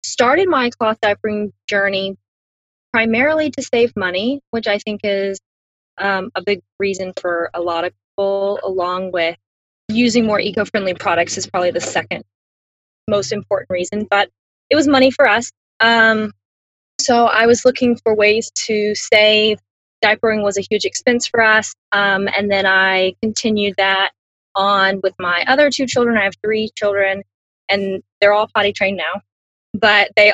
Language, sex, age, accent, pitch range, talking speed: English, female, 20-39, American, 195-235 Hz, 160 wpm